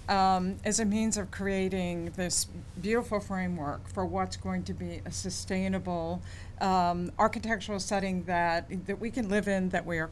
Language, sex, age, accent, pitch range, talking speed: English, female, 50-69, American, 175-210 Hz, 165 wpm